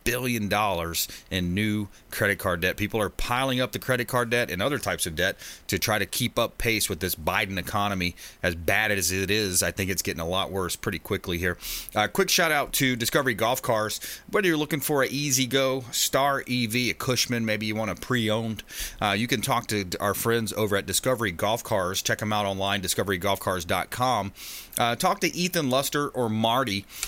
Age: 30-49